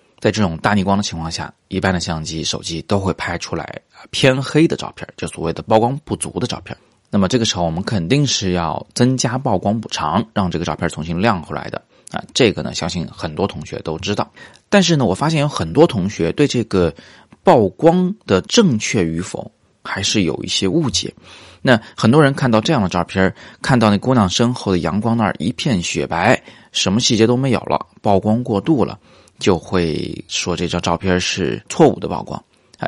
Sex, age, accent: male, 30-49, native